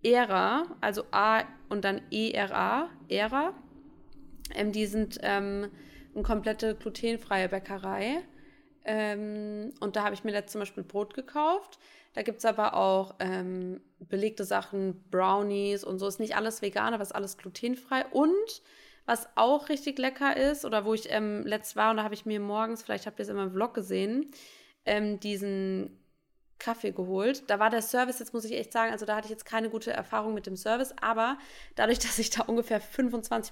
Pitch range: 200-240 Hz